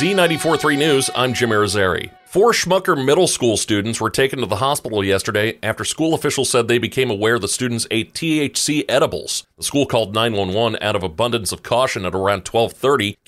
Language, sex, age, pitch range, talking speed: English, male, 40-59, 100-130 Hz, 185 wpm